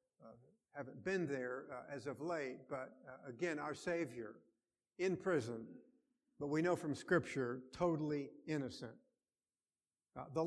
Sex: male